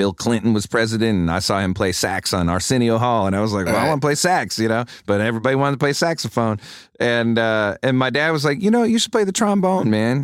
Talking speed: 270 wpm